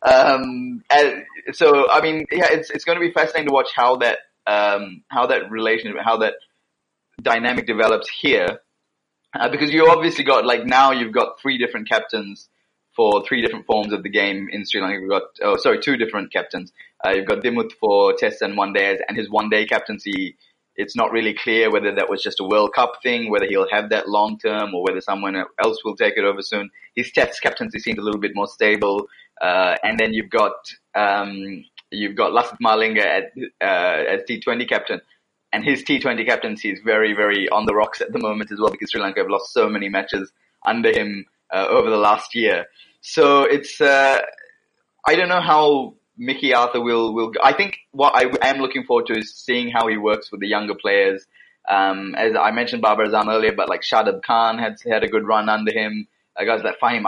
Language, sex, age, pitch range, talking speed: English, male, 20-39, 105-165 Hz, 210 wpm